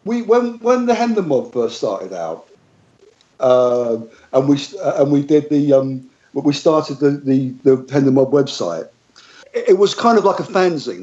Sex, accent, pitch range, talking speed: male, British, 130-165 Hz, 185 wpm